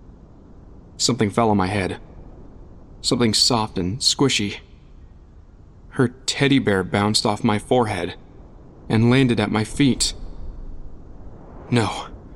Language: English